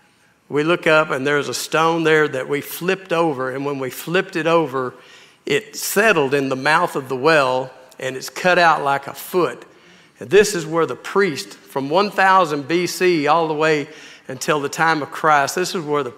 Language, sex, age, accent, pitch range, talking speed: English, male, 50-69, American, 145-190 Hz, 200 wpm